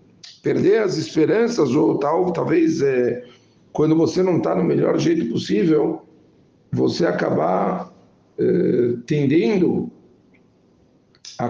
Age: 60-79